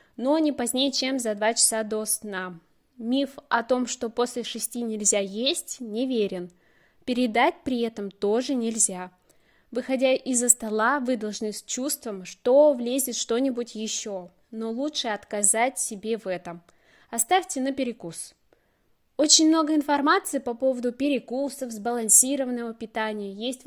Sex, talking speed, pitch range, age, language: female, 130 wpm, 215-265 Hz, 20-39, Russian